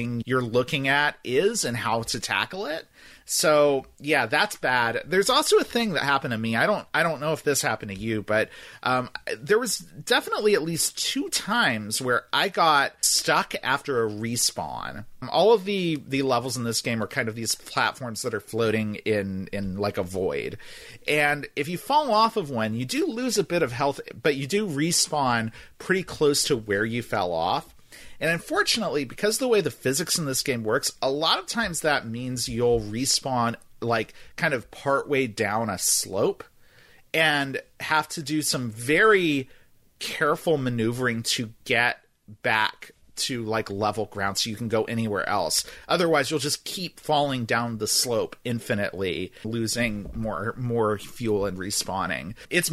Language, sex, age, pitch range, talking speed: English, male, 40-59, 115-160 Hz, 180 wpm